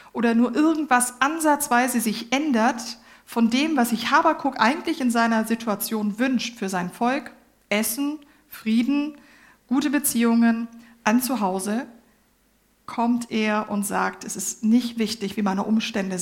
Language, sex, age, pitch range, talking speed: German, female, 50-69, 220-255 Hz, 135 wpm